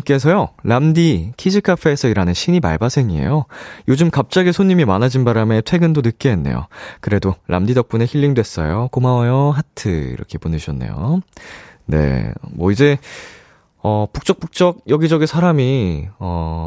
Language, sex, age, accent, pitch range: Korean, male, 20-39, native, 95-150 Hz